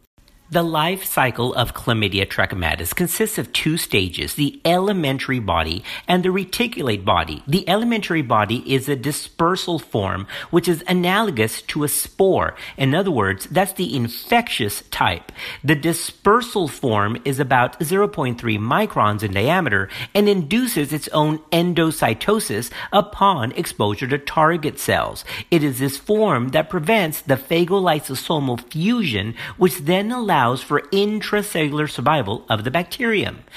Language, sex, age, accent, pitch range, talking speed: English, male, 50-69, American, 125-185 Hz, 135 wpm